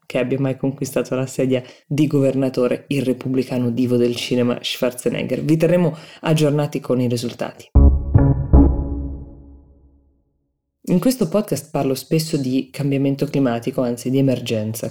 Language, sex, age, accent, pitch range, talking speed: Italian, female, 20-39, native, 125-160 Hz, 125 wpm